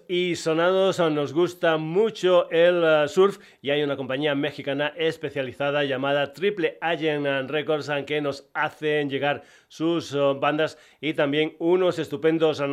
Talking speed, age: 125 wpm, 30-49